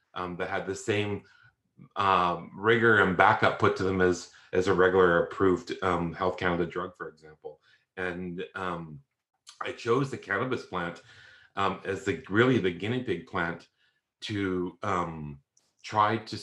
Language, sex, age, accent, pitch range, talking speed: English, male, 40-59, American, 90-105 Hz, 155 wpm